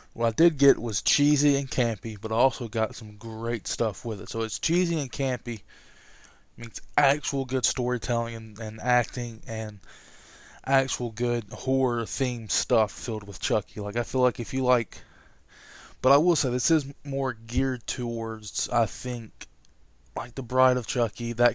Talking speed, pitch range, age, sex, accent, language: 165 wpm, 115-125 Hz, 20-39, male, American, English